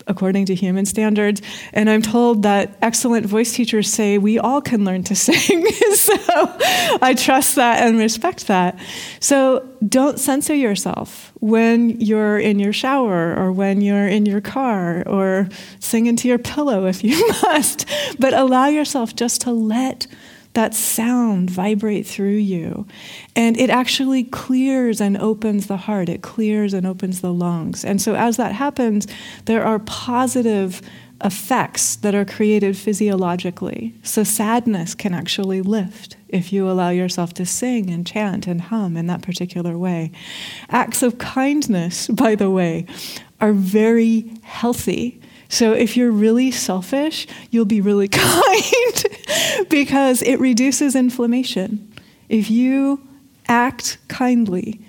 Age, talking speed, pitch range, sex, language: 30-49, 145 wpm, 195-240 Hz, female, English